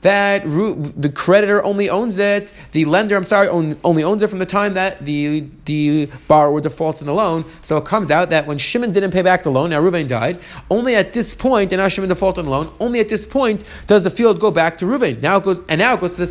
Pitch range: 160-210 Hz